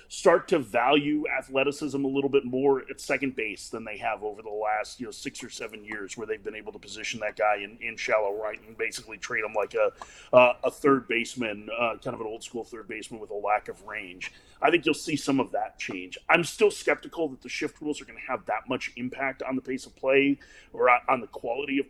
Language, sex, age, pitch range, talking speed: English, male, 30-49, 120-185 Hz, 245 wpm